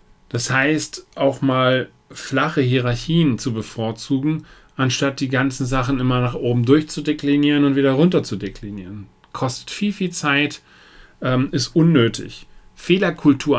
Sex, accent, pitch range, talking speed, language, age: male, German, 130-160 Hz, 125 wpm, German, 40-59